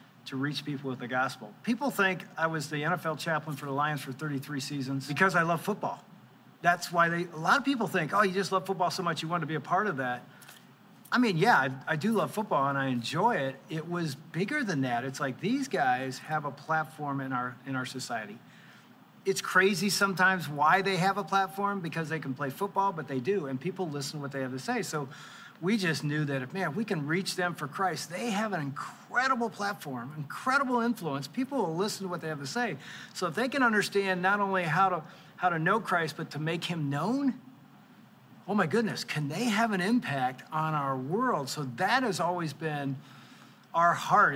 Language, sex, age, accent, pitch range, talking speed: English, male, 40-59, American, 145-195 Hz, 220 wpm